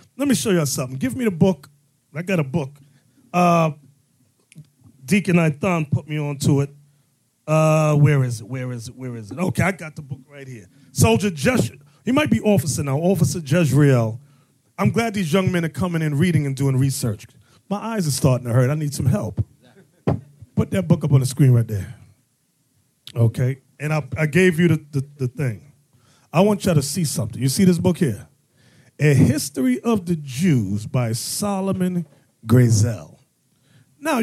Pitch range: 125-165 Hz